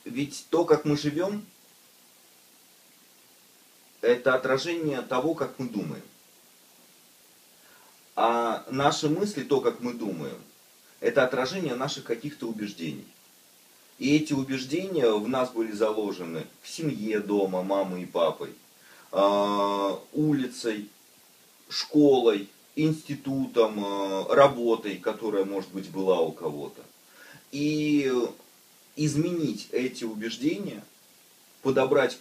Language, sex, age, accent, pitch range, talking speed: Russian, male, 30-49, native, 110-150 Hz, 95 wpm